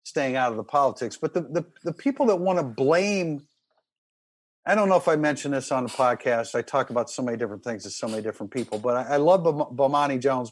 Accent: American